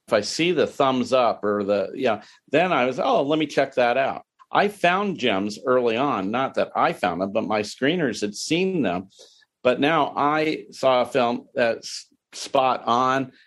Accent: American